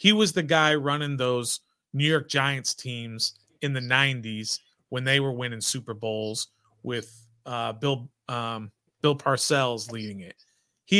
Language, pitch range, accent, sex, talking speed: English, 120-160 Hz, American, male, 155 wpm